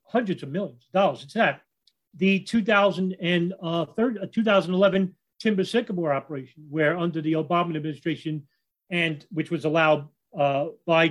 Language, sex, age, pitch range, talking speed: English, male, 40-59, 150-195 Hz, 130 wpm